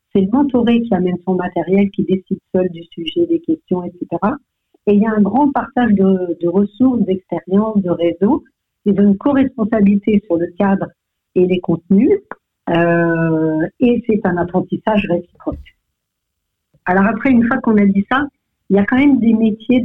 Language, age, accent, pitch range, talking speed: French, 60-79, French, 170-225 Hz, 175 wpm